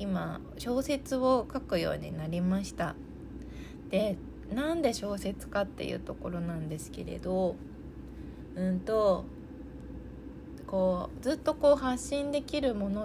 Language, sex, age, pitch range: Japanese, female, 20-39, 160-225 Hz